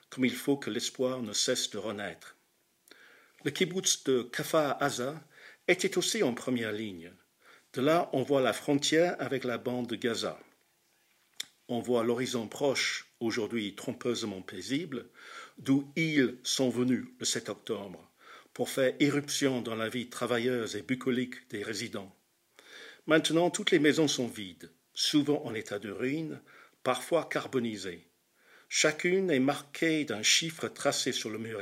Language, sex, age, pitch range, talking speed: French, male, 50-69, 115-145 Hz, 145 wpm